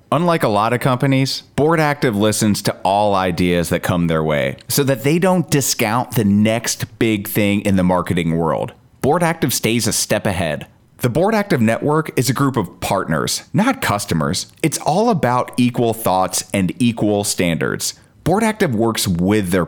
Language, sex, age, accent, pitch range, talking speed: English, male, 30-49, American, 95-135 Hz, 170 wpm